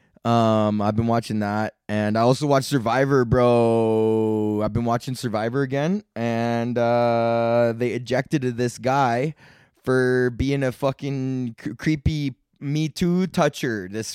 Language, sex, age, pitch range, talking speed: English, male, 20-39, 115-150 Hz, 135 wpm